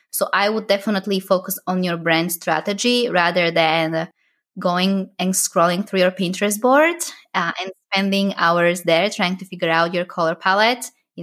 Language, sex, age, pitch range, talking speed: English, female, 20-39, 175-220 Hz, 165 wpm